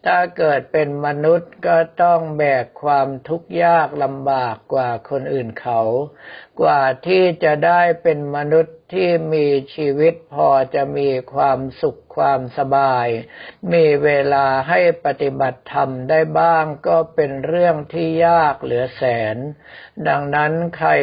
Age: 60-79